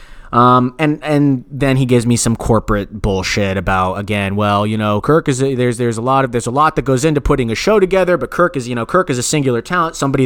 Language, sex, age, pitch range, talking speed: English, male, 30-49, 115-160 Hz, 255 wpm